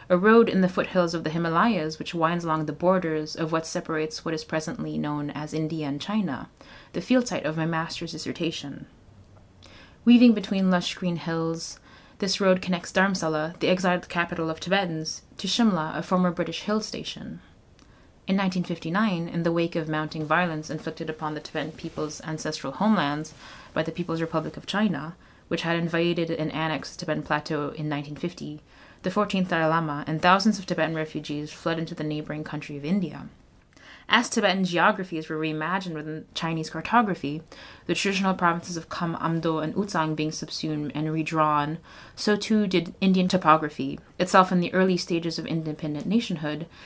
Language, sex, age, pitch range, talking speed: English, female, 20-39, 155-185 Hz, 170 wpm